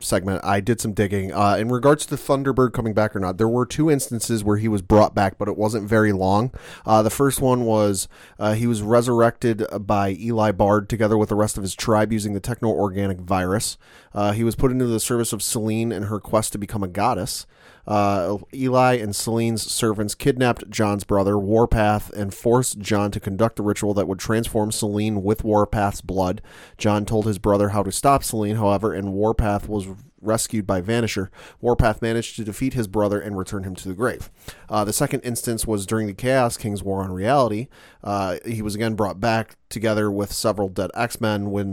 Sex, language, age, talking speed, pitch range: male, English, 30-49, 205 wpm, 100-115 Hz